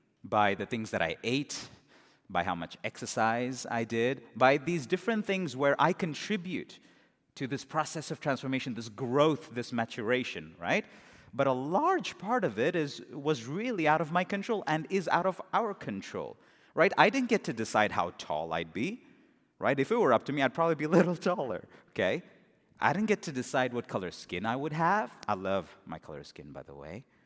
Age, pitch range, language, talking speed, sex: 30-49, 120-170 Hz, English, 200 wpm, male